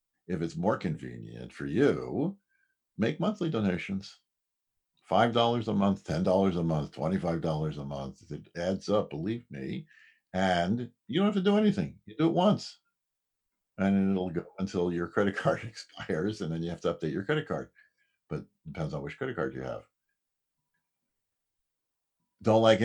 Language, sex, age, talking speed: English, male, 60-79, 165 wpm